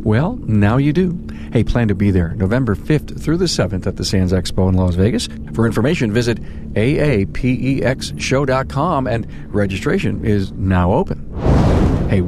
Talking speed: 150 wpm